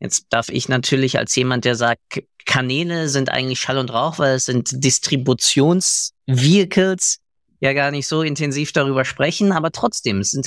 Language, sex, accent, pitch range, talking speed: German, male, German, 110-145 Hz, 165 wpm